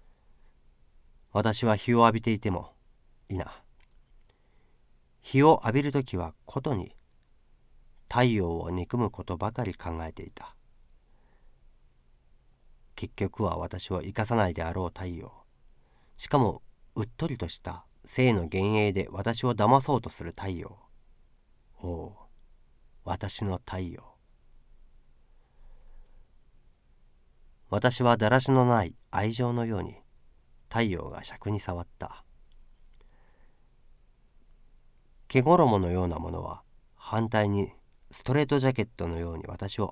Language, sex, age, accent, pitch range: Japanese, male, 40-59, native, 85-115 Hz